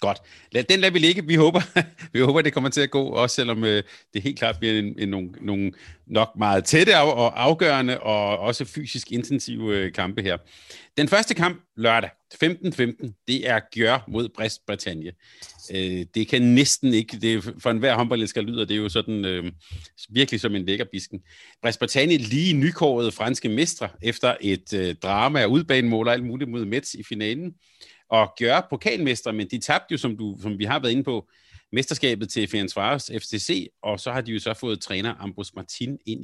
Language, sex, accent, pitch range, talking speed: Danish, male, native, 105-140 Hz, 195 wpm